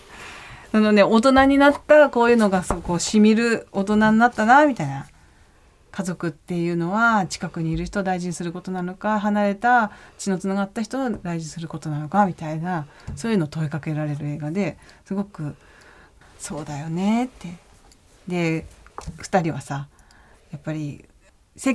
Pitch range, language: 150-210 Hz, Japanese